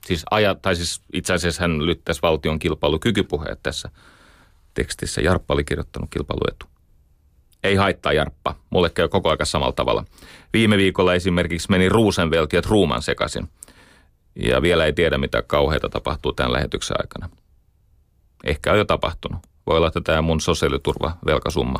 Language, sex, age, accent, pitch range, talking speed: Finnish, male, 30-49, native, 80-95 Hz, 145 wpm